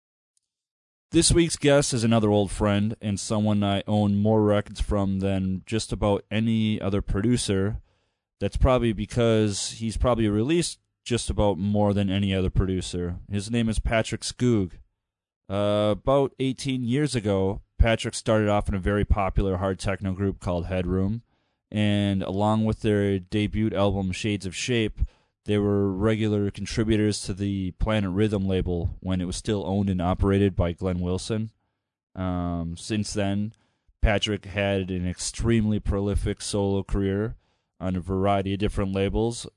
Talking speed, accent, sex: 150 wpm, American, male